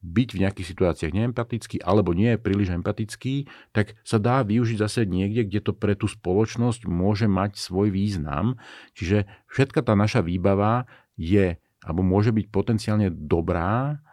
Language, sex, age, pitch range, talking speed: Slovak, male, 50-69, 85-105 Hz, 155 wpm